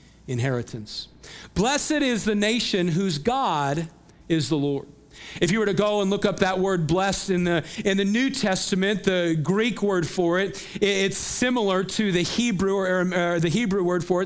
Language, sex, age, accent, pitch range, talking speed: English, male, 50-69, American, 180-225 Hz, 185 wpm